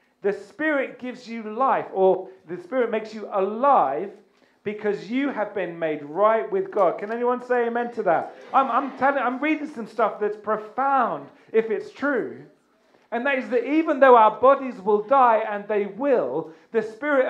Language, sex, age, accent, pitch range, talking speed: English, male, 40-59, British, 215-270 Hz, 180 wpm